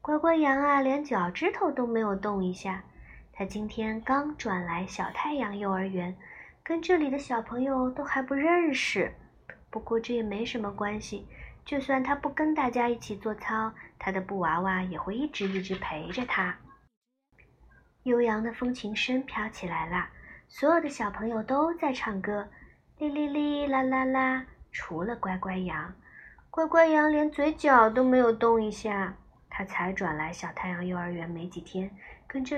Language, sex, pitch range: Chinese, male, 190-265 Hz